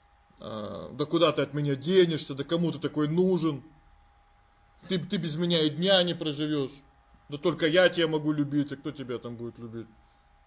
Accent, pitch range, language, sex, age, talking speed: native, 115-165 Hz, Russian, male, 20-39, 180 wpm